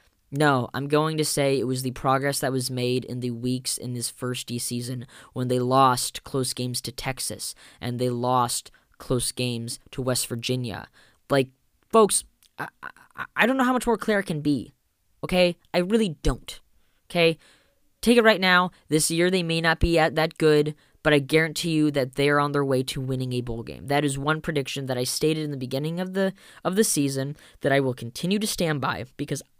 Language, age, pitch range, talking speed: English, 10-29, 125-160 Hz, 210 wpm